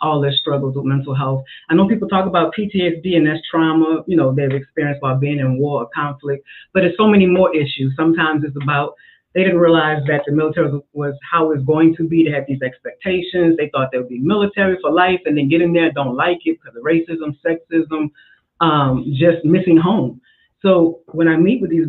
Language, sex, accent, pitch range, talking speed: English, female, American, 135-165 Hz, 220 wpm